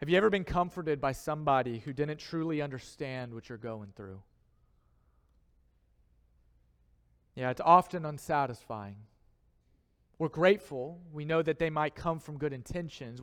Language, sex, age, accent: English, male, 40-59, American